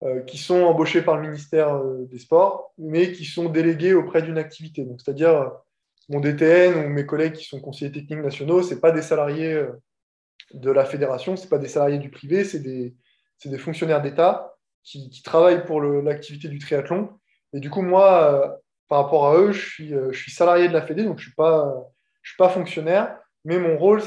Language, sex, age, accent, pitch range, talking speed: French, male, 20-39, French, 140-175 Hz, 205 wpm